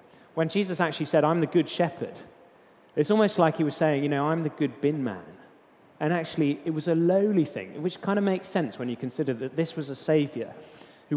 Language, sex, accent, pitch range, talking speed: English, male, British, 140-195 Hz, 225 wpm